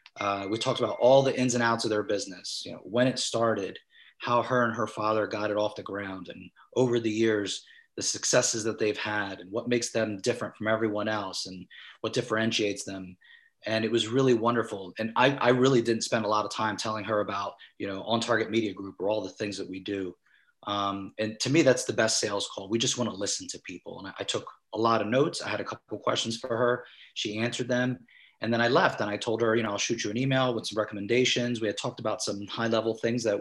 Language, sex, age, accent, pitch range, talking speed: English, male, 30-49, American, 105-120 Hz, 250 wpm